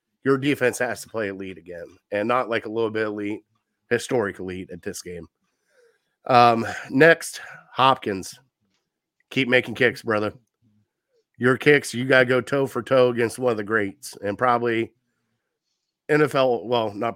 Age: 30-49